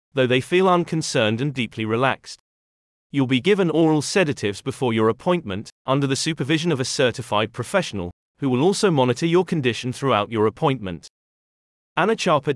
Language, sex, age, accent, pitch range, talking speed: English, male, 30-49, British, 115-160 Hz, 155 wpm